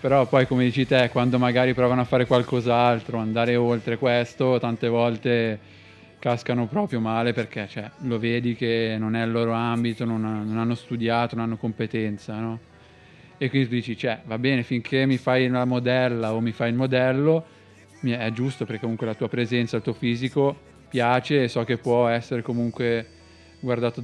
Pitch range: 115-125 Hz